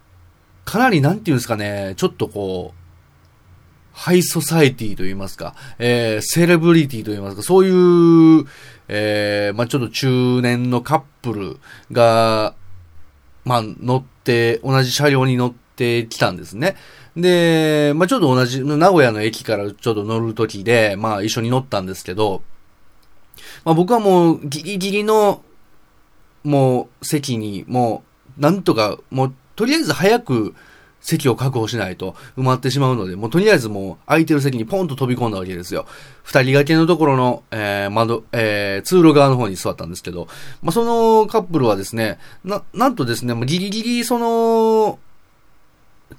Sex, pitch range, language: male, 110-170 Hz, Japanese